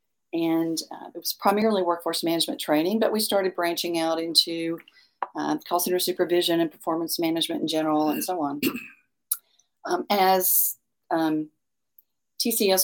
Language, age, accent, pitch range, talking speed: English, 40-59, American, 165-200 Hz, 140 wpm